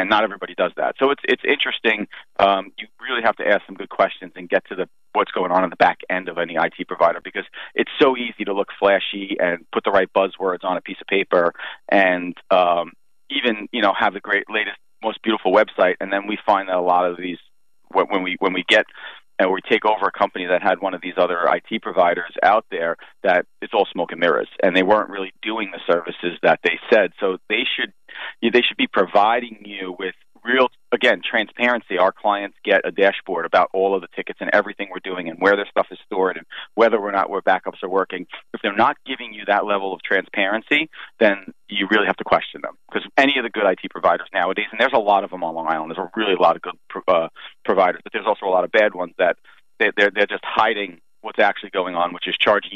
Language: English